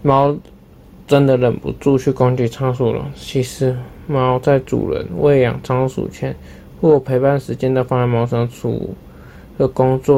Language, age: Chinese, 20-39